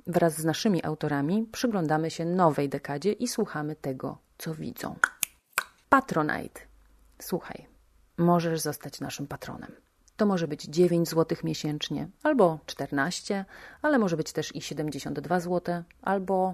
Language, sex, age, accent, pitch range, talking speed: Polish, female, 30-49, native, 150-185 Hz, 125 wpm